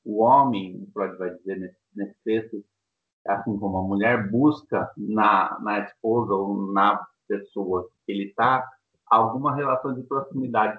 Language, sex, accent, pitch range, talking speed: Portuguese, male, Brazilian, 110-160 Hz, 150 wpm